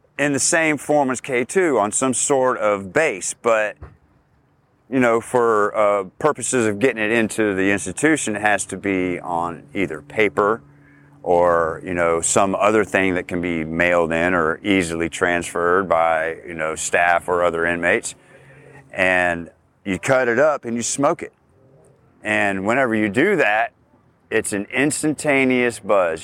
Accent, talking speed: American, 160 wpm